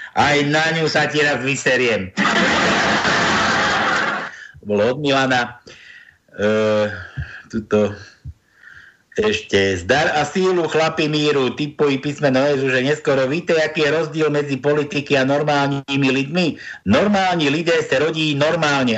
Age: 60-79